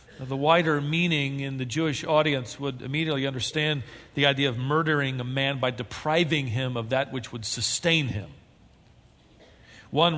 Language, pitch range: English, 130-175 Hz